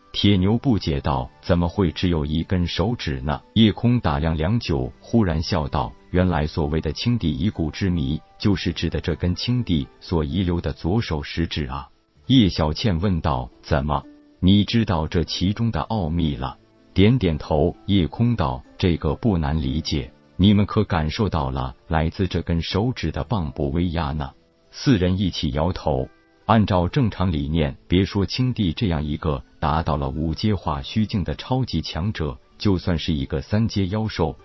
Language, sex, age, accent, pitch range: Chinese, male, 50-69, native, 75-100 Hz